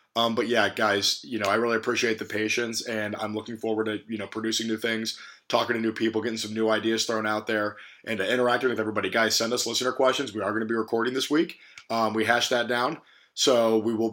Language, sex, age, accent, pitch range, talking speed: English, male, 20-39, American, 105-120 Hz, 240 wpm